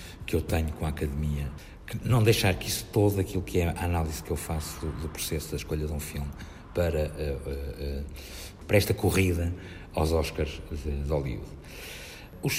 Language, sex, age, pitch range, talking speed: Portuguese, male, 50-69, 85-95 Hz, 195 wpm